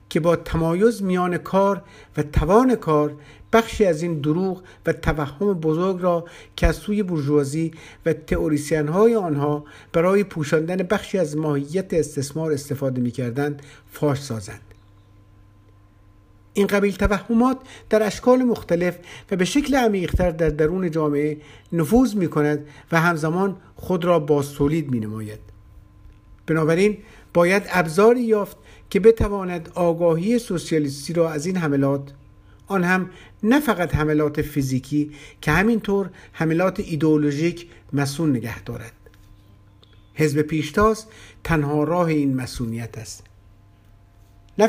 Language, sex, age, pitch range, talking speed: Persian, male, 50-69, 135-180 Hz, 115 wpm